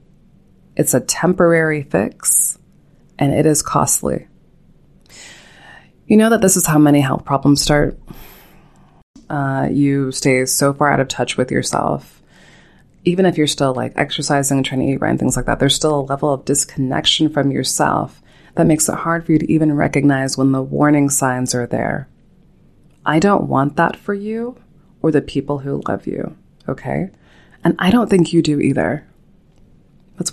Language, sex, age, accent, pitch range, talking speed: English, female, 20-39, American, 140-170 Hz, 170 wpm